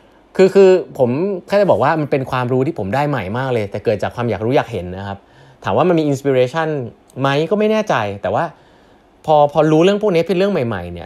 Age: 20-39